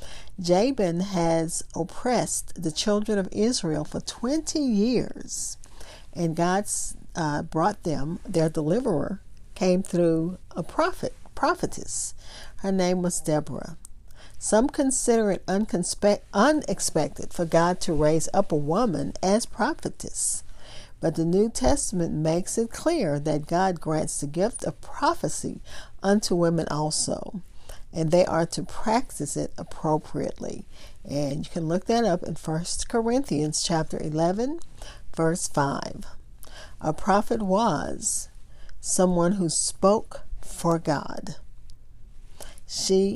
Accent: American